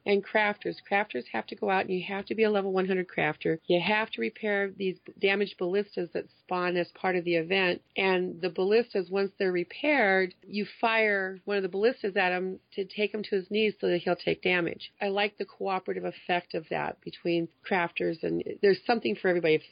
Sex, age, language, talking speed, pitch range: female, 40-59, English, 215 wpm, 175-210 Hz